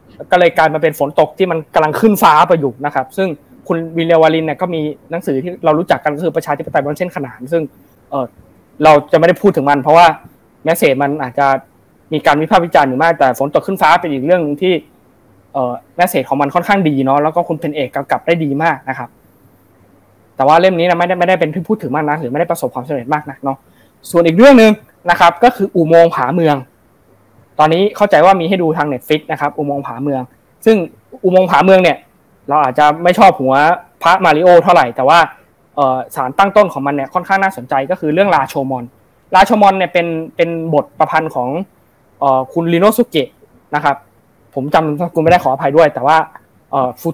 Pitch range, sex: 140-175 Hz, male